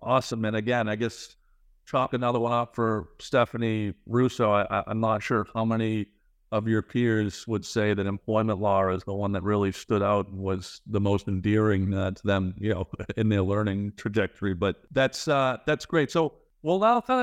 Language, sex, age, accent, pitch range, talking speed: English, male, 50-69, American, 100-125 Hz, 200 wpm